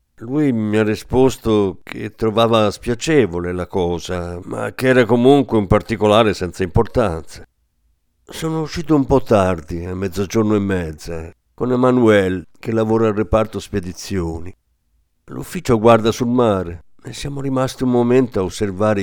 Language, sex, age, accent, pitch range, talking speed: Italian, male, 50-69, native, 90-125 Hz, 140 wpm